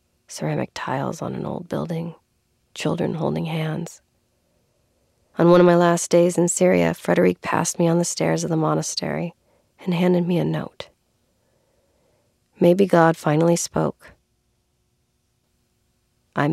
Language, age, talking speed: English, 40-59, 130 wpm